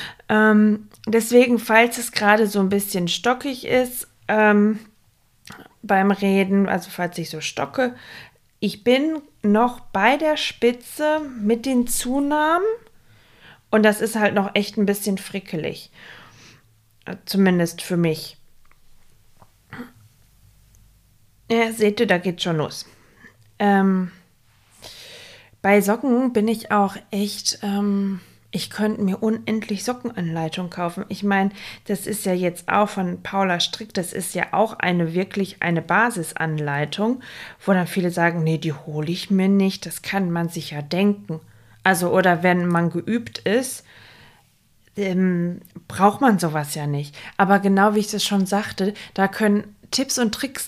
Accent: German